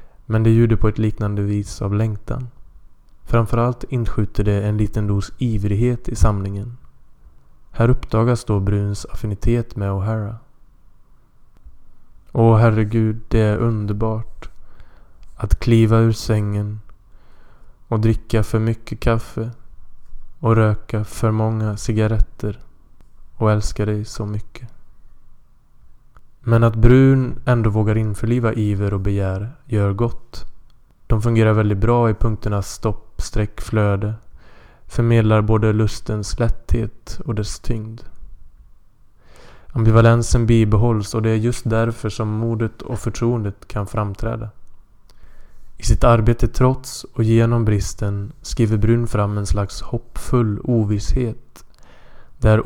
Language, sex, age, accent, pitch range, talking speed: Swedish, male, 20-39, Norwegian, 105-115 Hz, 115 wpm